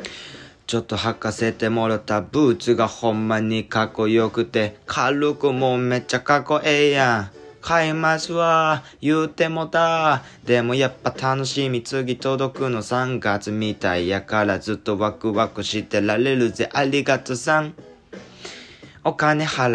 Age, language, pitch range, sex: 20-39, Japanese, 105-135 Hz, male